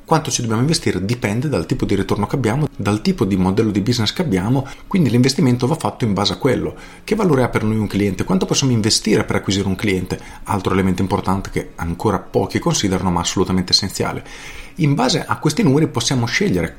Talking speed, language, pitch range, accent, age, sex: 205 wpm, Italian, 100-130 Hz, native, 40-59, male